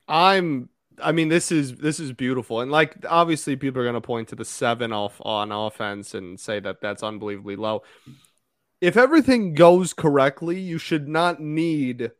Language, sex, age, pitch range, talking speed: English, male, 20-39, 125-155 Hz, 175 wpm